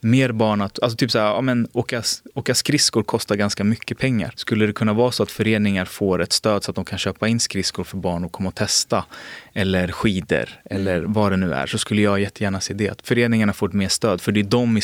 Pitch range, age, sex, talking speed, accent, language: 95-115 Hz, 20-39, male, 250 wpm, native, Swedish